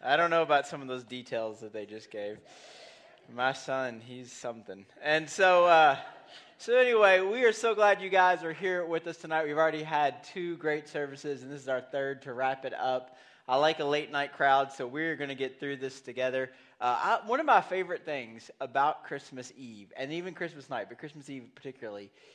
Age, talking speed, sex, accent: 20-39, 210 wpm, male, American